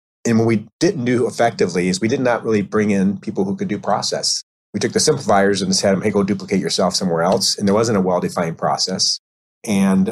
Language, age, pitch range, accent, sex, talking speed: English, 30-49, 95-110 Hz, American, male, 220 wpm